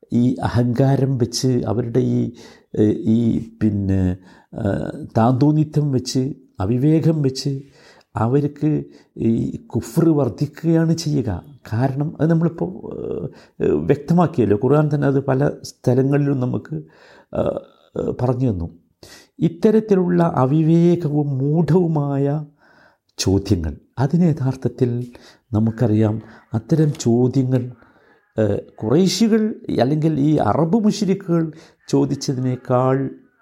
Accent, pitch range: native, 120-155 Hz